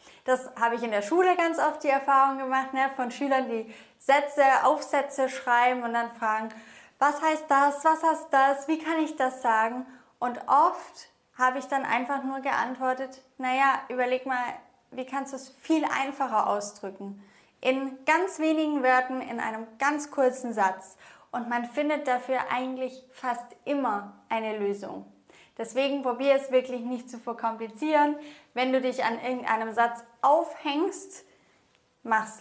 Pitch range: 235-285 Hz